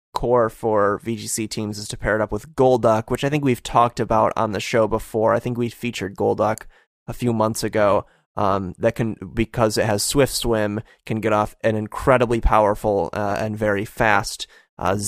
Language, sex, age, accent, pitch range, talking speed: English, male, 20-39, American, 110-125 Hz, 195 wpm